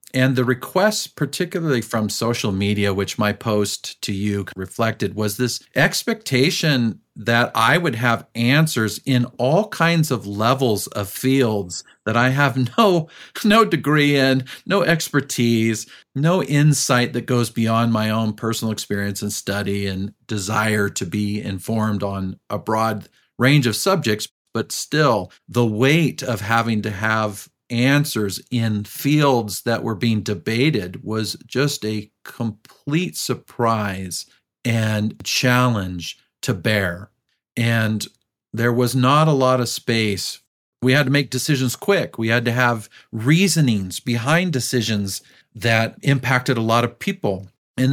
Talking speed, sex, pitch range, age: 140 wpm, male, 105-135 Hz, 40-59